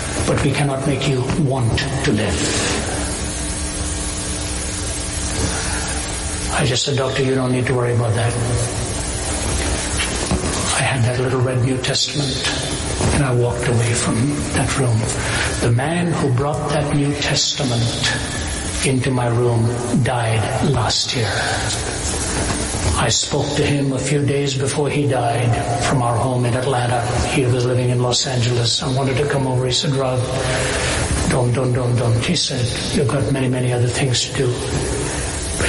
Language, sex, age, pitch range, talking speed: English, male, 60-79, 120-140 Hz, 150 wpm